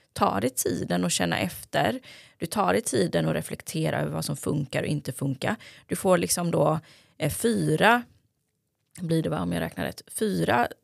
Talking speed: 175 wpm